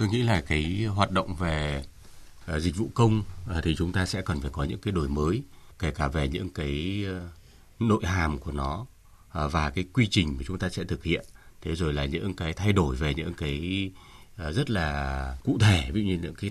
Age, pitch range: 30-49, 85-110 Hz